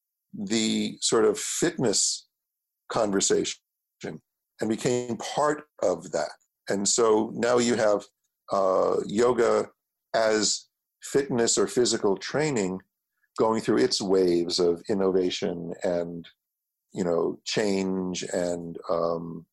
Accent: American